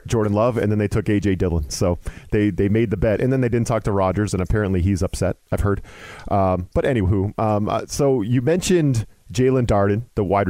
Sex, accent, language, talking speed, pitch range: male, American, English, 225 wpm, 100-120 Hz